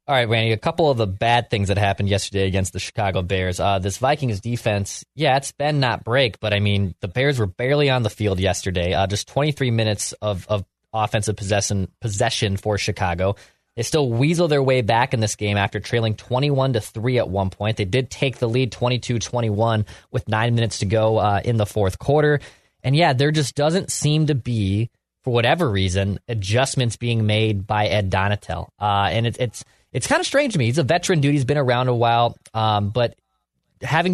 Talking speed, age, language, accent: 205 wpm, 20-39, English, American